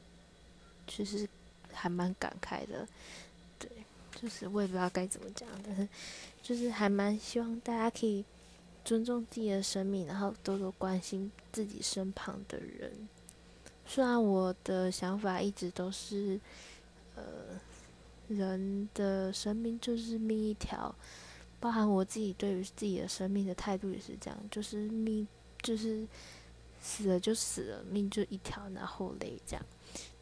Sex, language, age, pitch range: female, Chinese, 20-39, 185-215 Hz